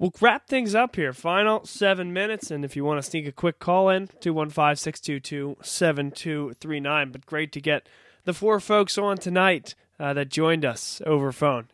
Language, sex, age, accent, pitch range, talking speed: English, male, 20-39, American, 140-195 Hz, 220 wpm